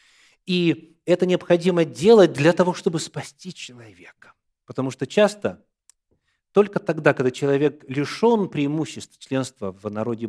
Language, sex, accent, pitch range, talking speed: Russian, male, native, 110-150 Hz, 120 wpm